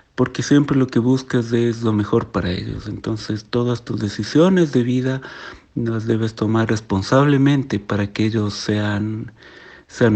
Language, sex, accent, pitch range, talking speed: Spanish, male, Mexican, 110-130 Hz, 150 wpm